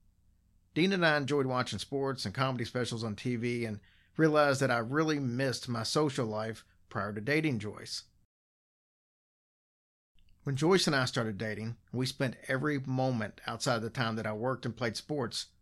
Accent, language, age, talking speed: American, English, 50-69, 165 wpm